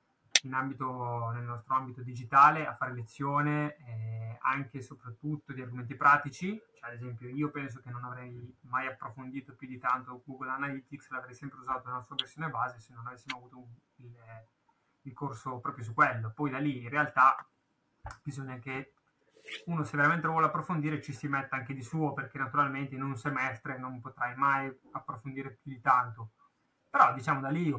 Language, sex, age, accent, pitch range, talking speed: Italian, male, 20-39, native, 125-150 Hz, 180 wpm